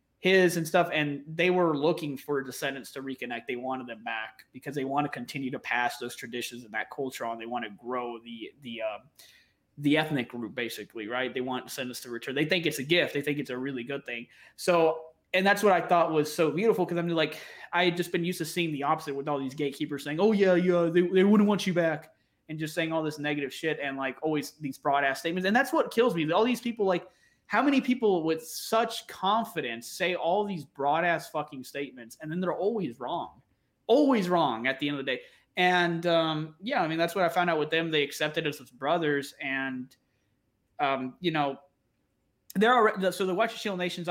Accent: American